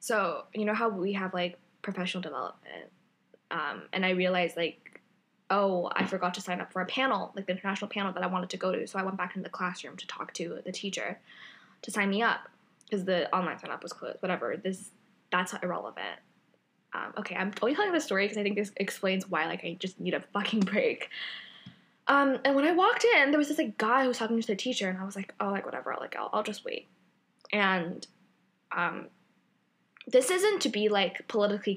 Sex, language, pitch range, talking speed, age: female, English, 185-225 Hz, 220 wpm, 10-29